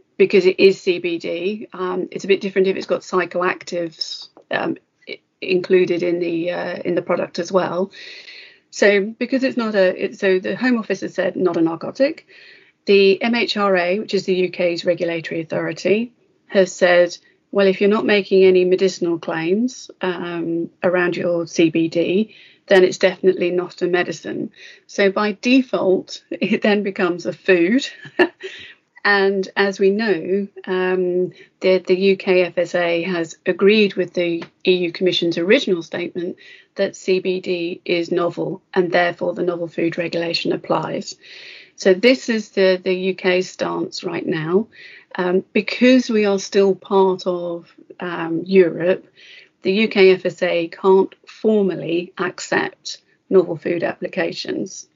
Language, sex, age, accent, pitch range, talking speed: English, female, 30-49, British, 175-200 Hz, 140 wpm